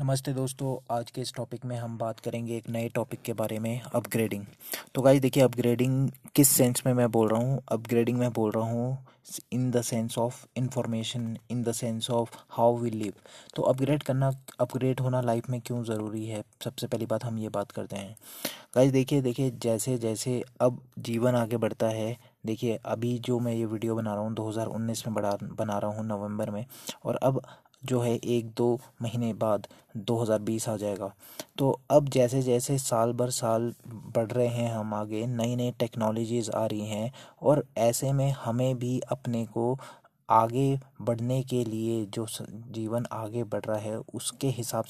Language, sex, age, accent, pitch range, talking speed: Hindi, male, 20-39, native, 110-125 Hz, 185 wpm